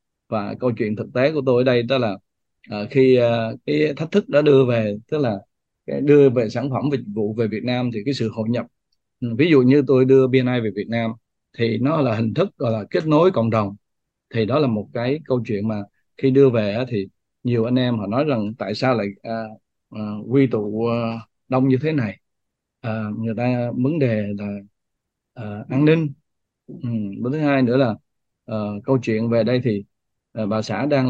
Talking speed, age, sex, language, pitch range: 215 wpm, 20-39, male, Vietnamese, 110-145 Hz